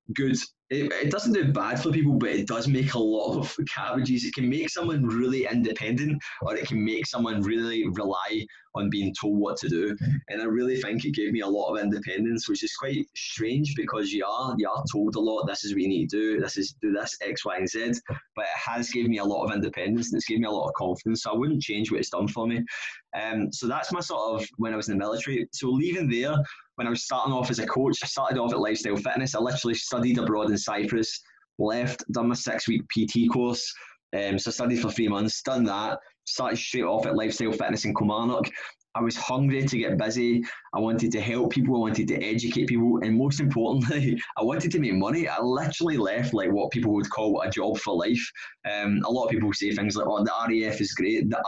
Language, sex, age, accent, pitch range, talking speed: English, male, 20-39, British, 110-130 Hz, 240 wpm